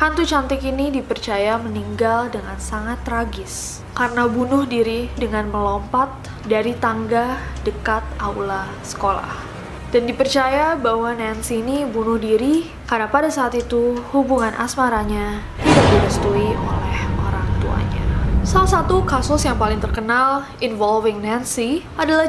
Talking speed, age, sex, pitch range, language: 115 wpm, 20-39, female, 225-275 Hz, Indonesian